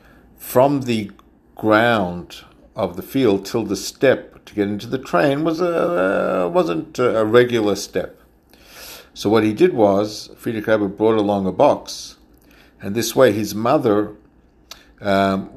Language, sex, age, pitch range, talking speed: English, male, 60-79, 100-125 Hz, 145 wpm